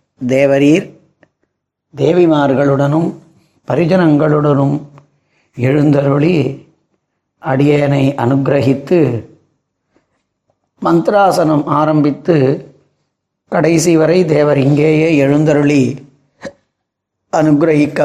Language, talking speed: Tamil, 45 wpm